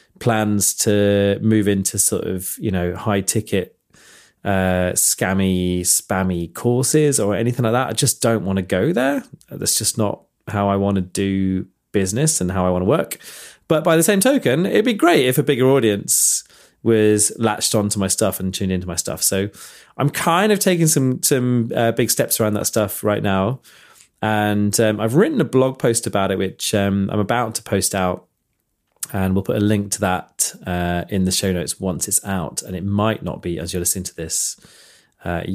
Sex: male